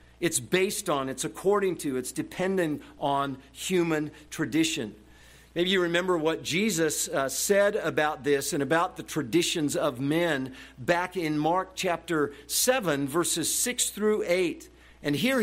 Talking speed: 145 wpm